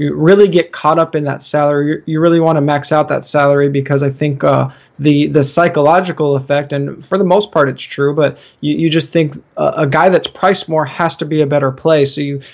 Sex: male